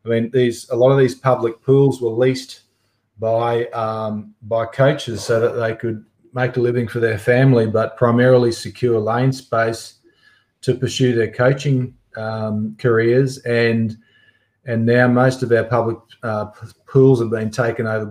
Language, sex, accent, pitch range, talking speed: English, male, Australian, 110-120 Hz, 160 wpm